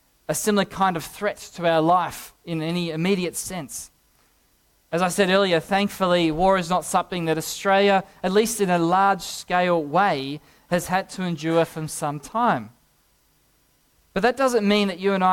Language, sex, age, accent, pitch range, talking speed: English, male, 20-39, Australian, 165-205 Hz, 170 wpm